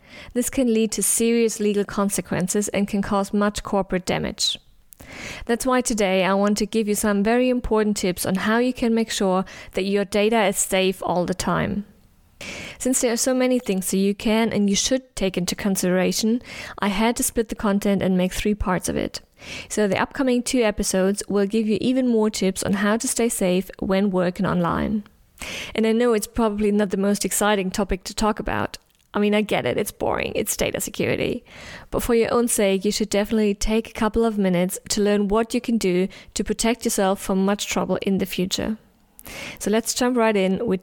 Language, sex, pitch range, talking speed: English, female, 195-225 Hz, 210 wpm